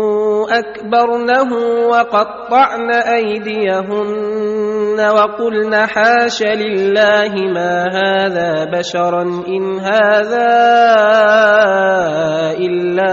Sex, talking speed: male, 55 wpm